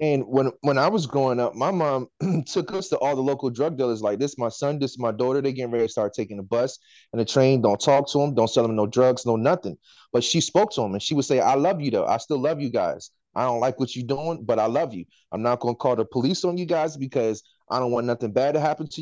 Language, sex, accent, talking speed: English, male, American, 300 wpm